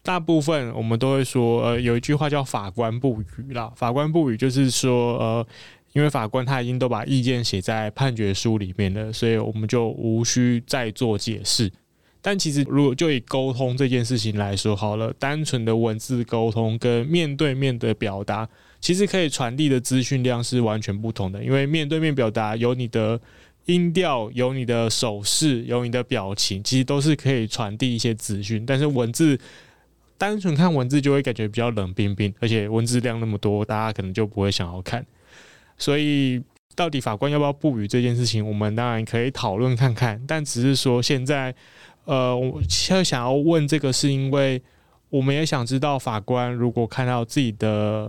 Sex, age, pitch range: male, 20-39, 110-135 Hz